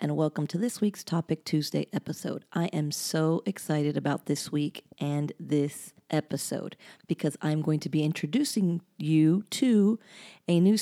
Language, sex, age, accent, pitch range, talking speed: English, female, 40-59, American, 150-185 Hz, 155 wpm